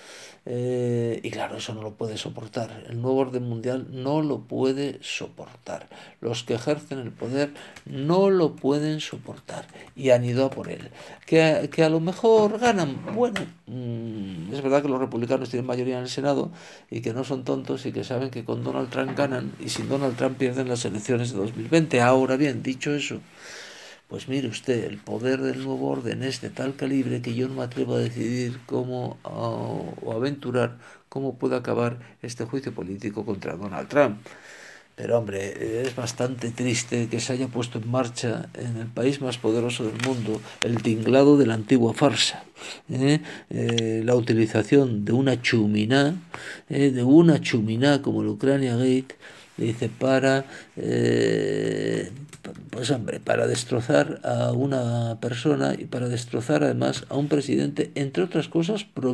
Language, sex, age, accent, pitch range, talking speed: Spanish, male, 60-79, Spanish, 115-135 Hz, 165 wpm